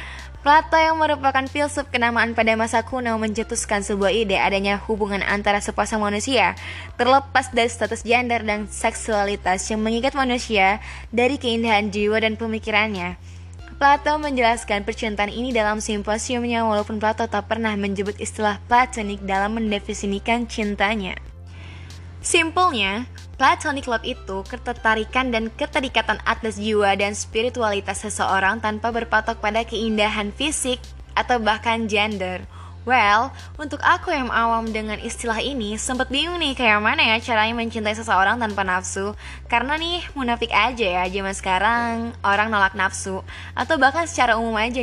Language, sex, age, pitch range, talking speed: Indonesian, female, 20-39, 200-240 Hz, 135 wpm